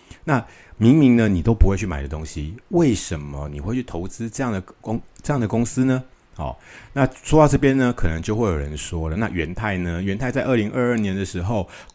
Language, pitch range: Chinese, 85-120 Hz